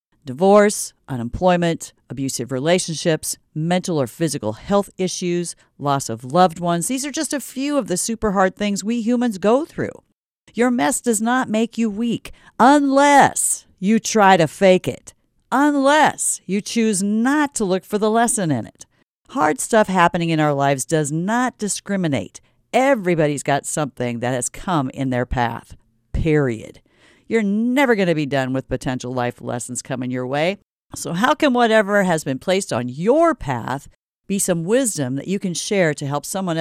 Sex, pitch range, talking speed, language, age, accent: female, 140-225 Hz, 170 wpm, English, 50-69, American